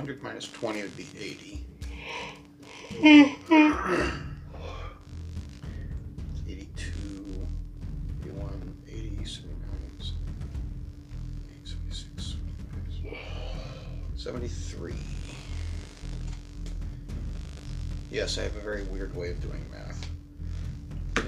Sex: male